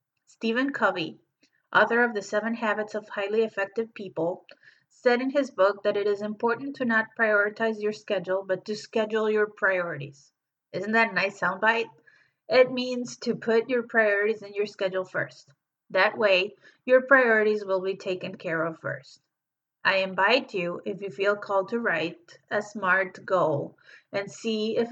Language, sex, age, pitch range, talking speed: English, female, 30-49, 190-230 Hz, 165 wpm